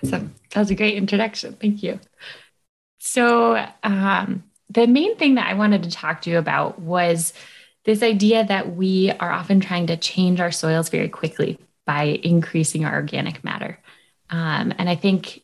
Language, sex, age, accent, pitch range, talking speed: English, female, 20-39, American, 165-210 Hz, 170 wpm